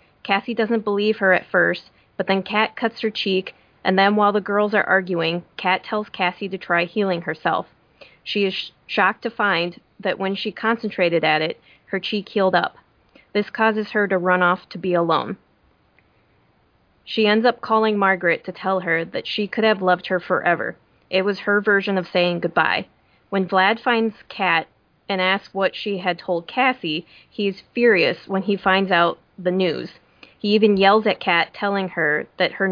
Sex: female